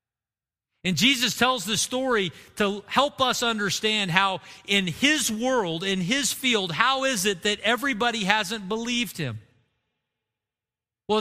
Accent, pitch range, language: American, 165-235 Hz, English